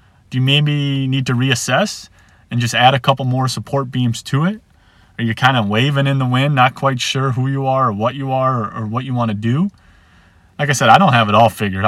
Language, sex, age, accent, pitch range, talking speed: English, male, 30-49, American, 95-125 Hz, 250 wpm